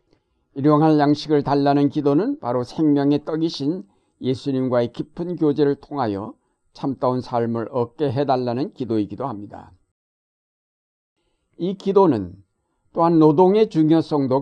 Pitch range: 125-150 Hz